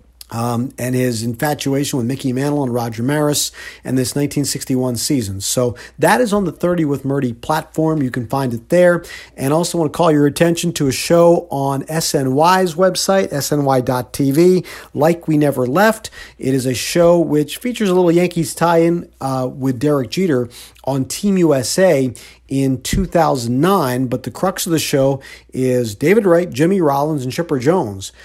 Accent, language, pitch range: American, English, 125-160 Hz